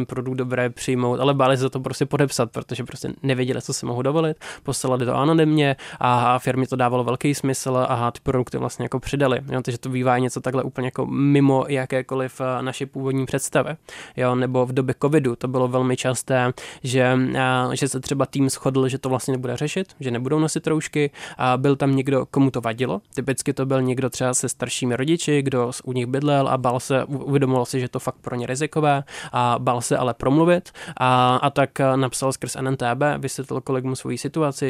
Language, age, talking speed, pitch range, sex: Czech, 20-39, 195 wpm, 125-135 Hz, male